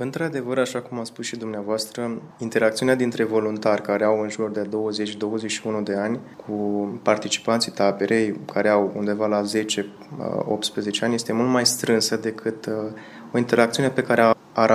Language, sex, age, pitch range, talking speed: Romanian, male, 20-39, 105-120 Hz, 150 wpm